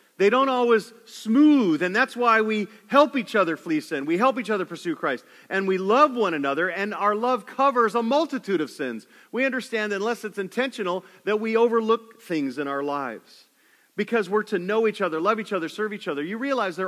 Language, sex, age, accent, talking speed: English, male, 40-59, American, 210 wpm